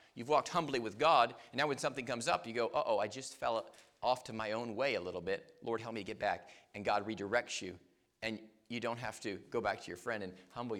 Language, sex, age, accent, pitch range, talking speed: English, male, 40-59, American, 120-170 Hz, 260 wpm